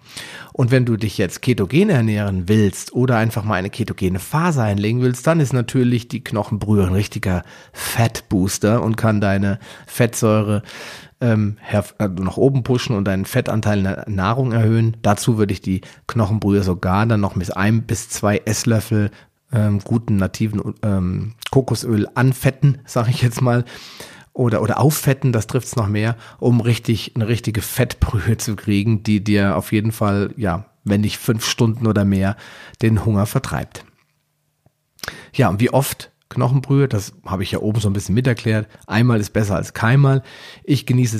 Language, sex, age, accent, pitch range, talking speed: German, male, 40-59, German, 100-120 Hz, 165 wpm